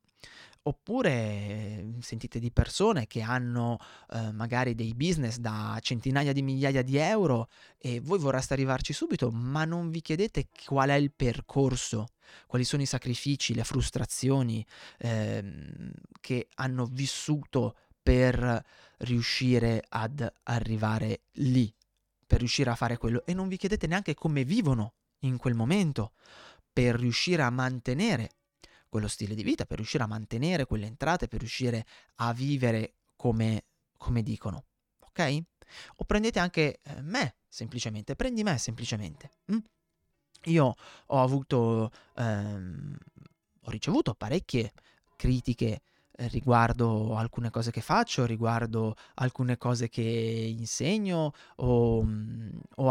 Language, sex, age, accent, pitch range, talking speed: Italian, male, 30-49, native, 115-145 Hz, 130 wpm